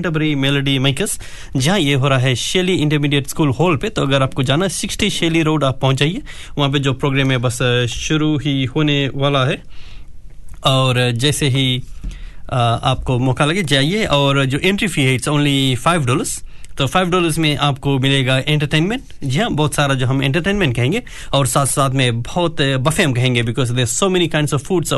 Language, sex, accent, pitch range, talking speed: Hindi, male, native, 130-155 Hz, 185 wpm